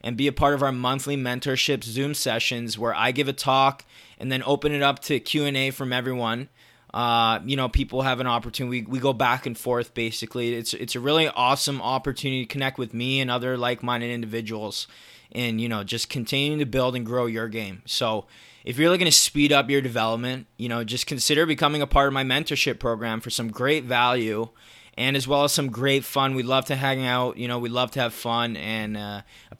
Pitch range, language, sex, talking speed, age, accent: 120-140 Hz, English, male, 220 wpm, 20-39, American